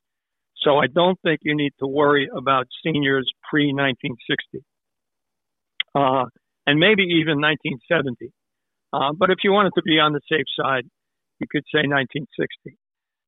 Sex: male